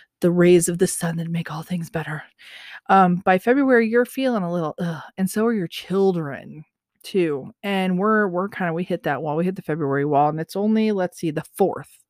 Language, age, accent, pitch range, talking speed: English, 30-49, American, 170-220 Hz, 225 wpm